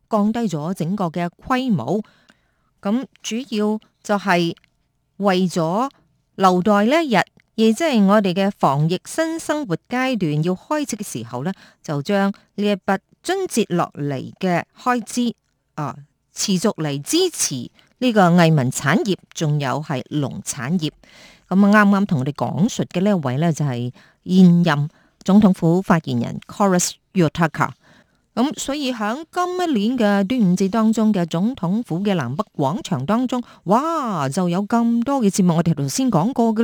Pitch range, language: 165-225 Hz, Chinese